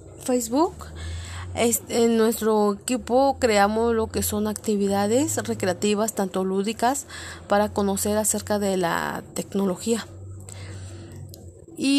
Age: 30-49